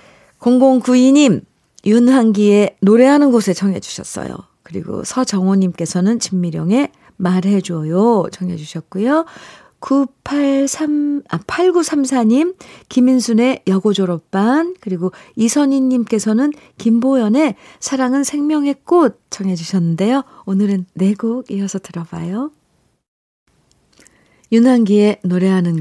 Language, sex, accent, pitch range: Korean, female, native, 175-260 Hz